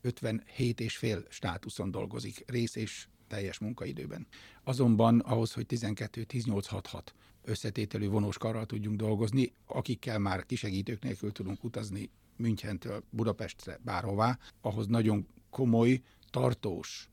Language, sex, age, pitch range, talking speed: Hungarian, male, 60-79, 100-120 Hz, 110 wpm